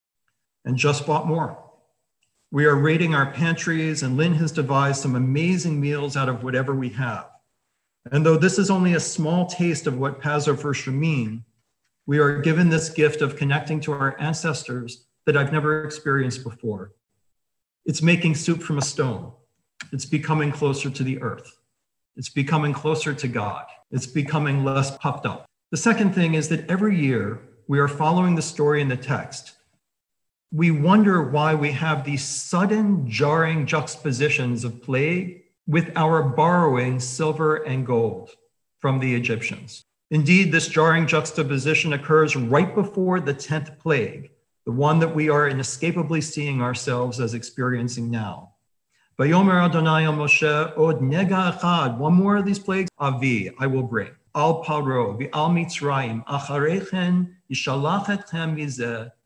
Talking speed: 135 wpm